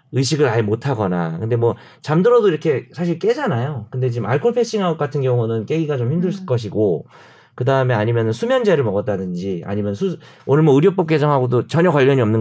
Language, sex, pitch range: Korean, male, 120-170 Hz